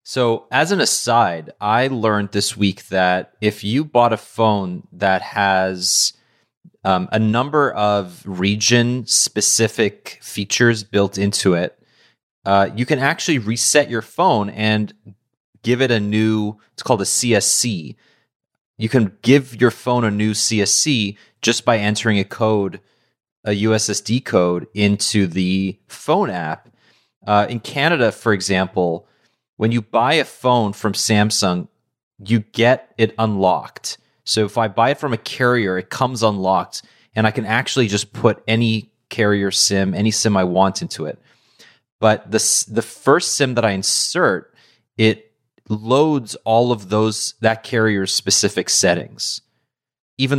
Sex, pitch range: male, 100-120 Hz